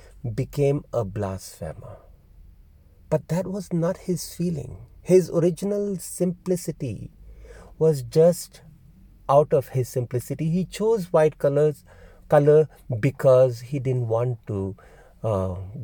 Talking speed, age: 105 wpm, 50-69